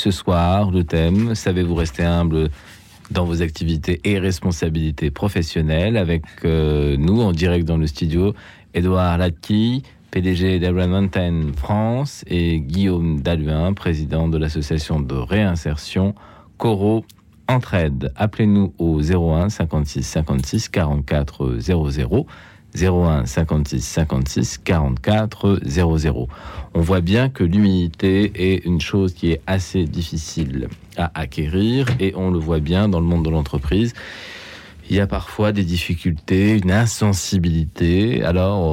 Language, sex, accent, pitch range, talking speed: French, male, French, 80-100 Hz, 120 wpm